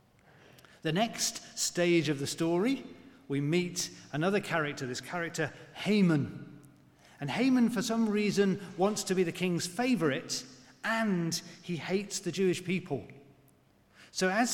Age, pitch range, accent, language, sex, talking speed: 40-59, 135-185 Hz, British, English, male, 130 wpm